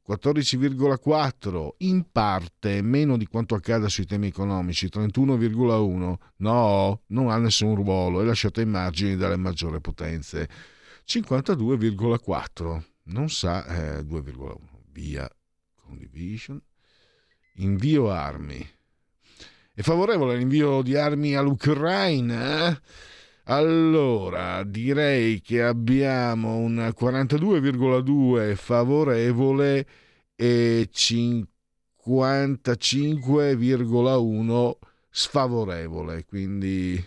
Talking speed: 80 wpm